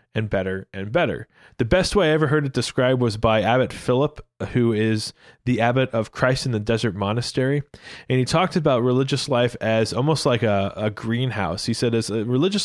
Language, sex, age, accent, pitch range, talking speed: English, male, 20-39, American, 110-135 Hz, 200 wpm